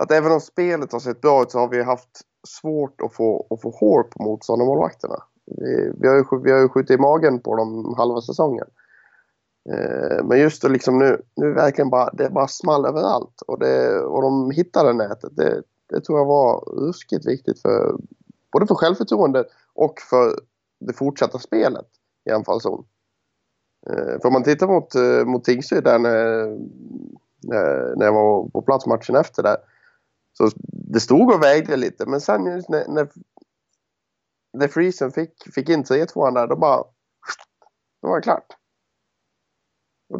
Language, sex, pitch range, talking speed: Swedish, male, 120-165 Hz, 165 wpm